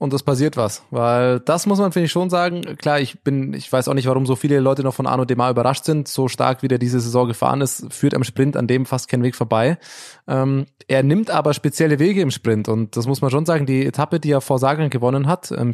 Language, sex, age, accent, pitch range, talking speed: German, male, 20-39, German, 130-175 Hz, 265 wpm